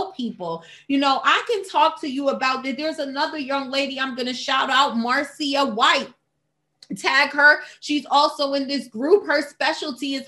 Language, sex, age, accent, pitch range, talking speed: English, female, 30-49, American, 225-280 Hz, 180 wpm